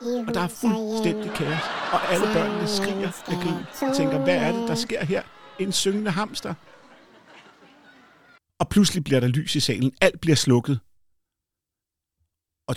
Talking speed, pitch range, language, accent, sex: 150 wpm, 115-175 Hz, Danish, native, male